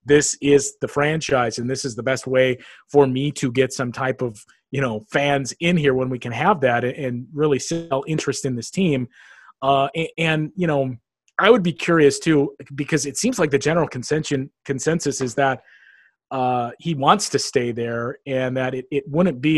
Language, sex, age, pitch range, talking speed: English, male, 30-49, 130-155 Hz, 200 wpm